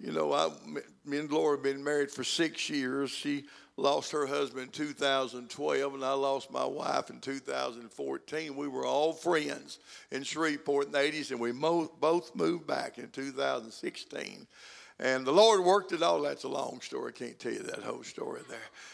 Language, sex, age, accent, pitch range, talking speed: English, male, 60-79, American, 135-180 Hz, 185 wpm